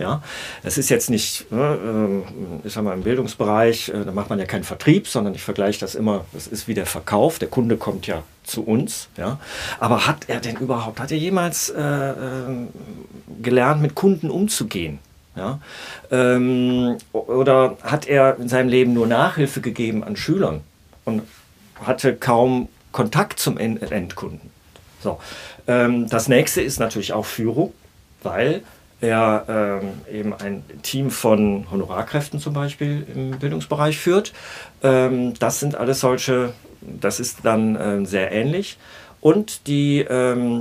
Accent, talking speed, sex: German, 150 wpm, male